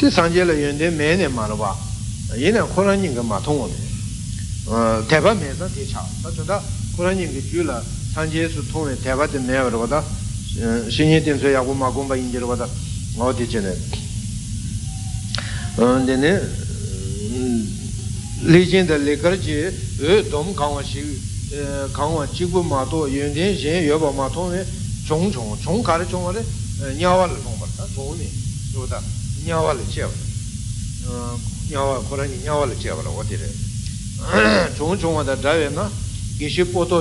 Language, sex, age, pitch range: Italian, male, 60-79, 105-145 Hz